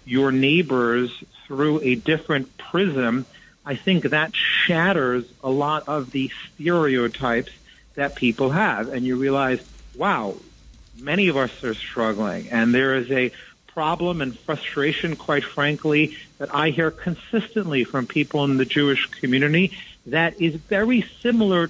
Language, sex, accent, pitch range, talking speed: English, male, American, 125-155 Hz, 140 wpm